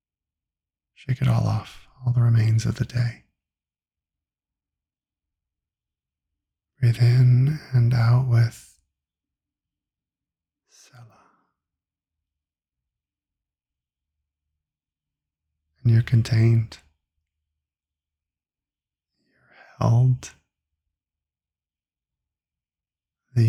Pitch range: 75-120 Hz